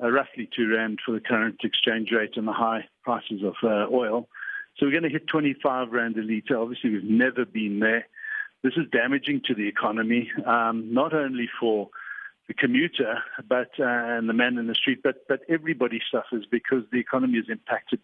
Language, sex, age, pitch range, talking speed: English, male, 50-69, 115-155 Hz, 195 wpm